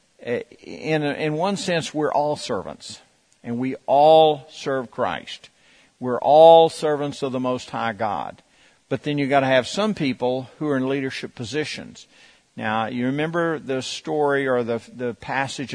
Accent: American